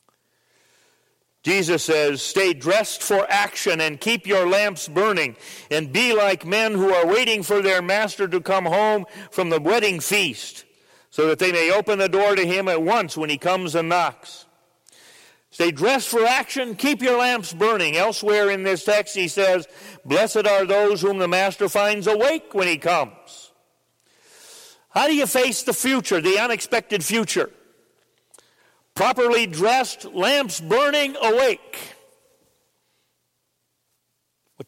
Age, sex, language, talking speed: 40-59, male, English, 145 wpm